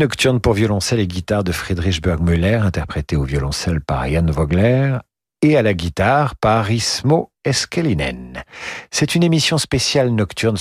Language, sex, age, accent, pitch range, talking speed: French, male, 50-69, French, 90-120 Hz, 145 wpm